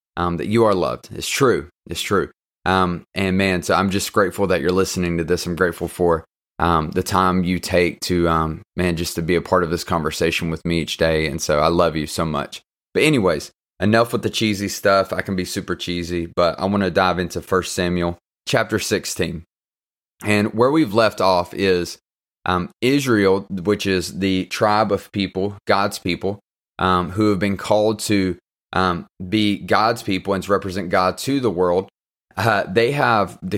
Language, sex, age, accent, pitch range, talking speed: English, male, 20-39, American, 90-100 Hz, 195 wpm